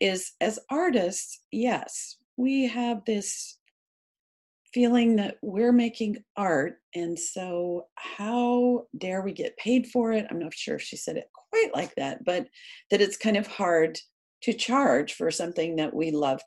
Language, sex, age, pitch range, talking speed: English, female, 50-69, 175-255 Hz, 160 wpm